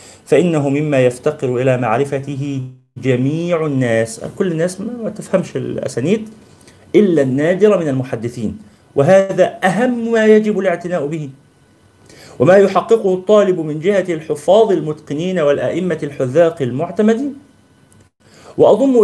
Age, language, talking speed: 40-59, Arabic, 105 wpm